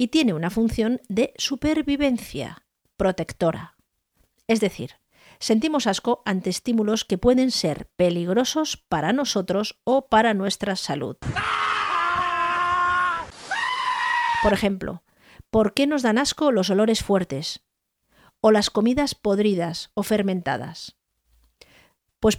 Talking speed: 105 wpm